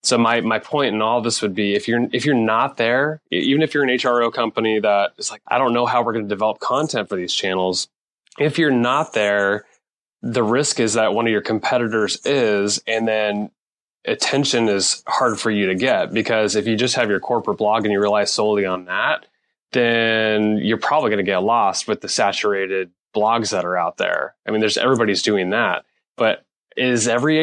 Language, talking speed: English, 215 wpm